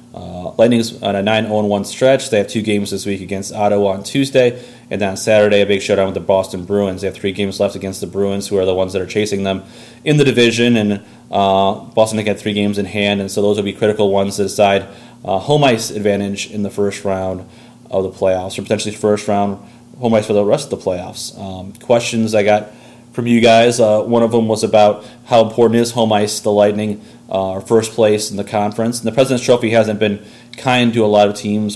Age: 30-49